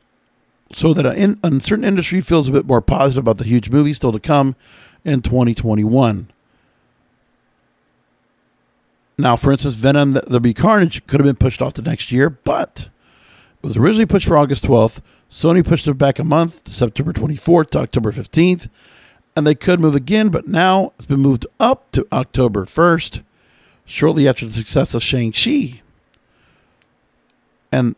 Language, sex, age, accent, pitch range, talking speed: English, male, 50-69, American, 120-160 Hz, 165 wpm